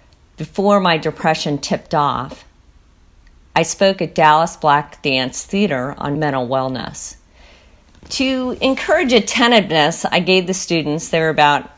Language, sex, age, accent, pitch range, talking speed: English, female, 50-69, American, 150-220 Hz, 125 wpm